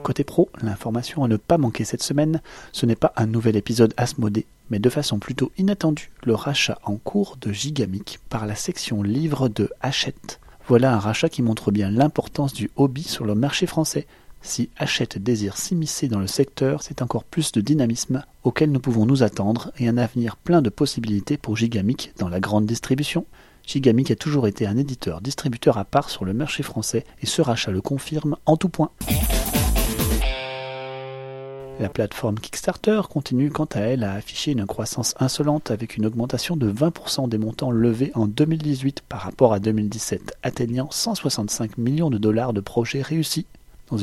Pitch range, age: 110-145 Hz, 30-49